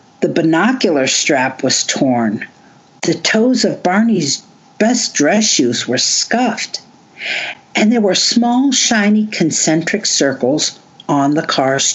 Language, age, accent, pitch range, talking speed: English, 60-79, American, 140-215 Hz, 120 wpm